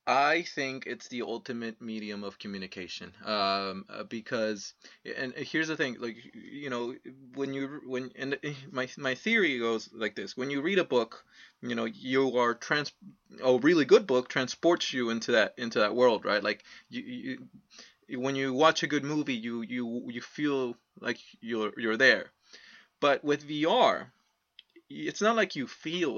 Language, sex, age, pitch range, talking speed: English, male, 20-39, 120-165 Hz, 170 wpm